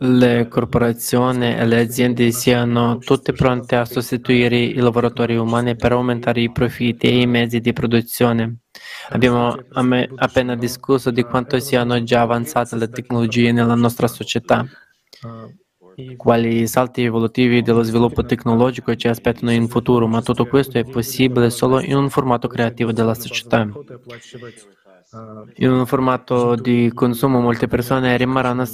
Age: 20-39